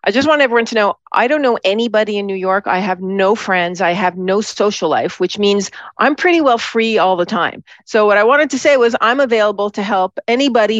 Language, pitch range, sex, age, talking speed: English, 180-220 Hz, female, 40-59, 240 wpm